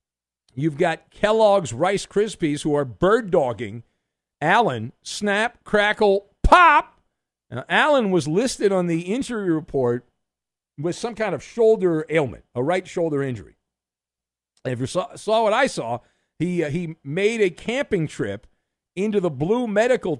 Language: English